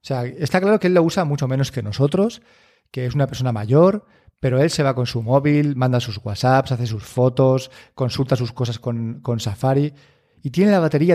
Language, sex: Spanish, male